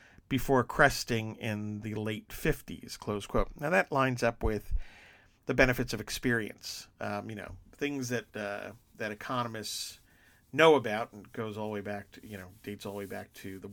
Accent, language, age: American, English, 50-69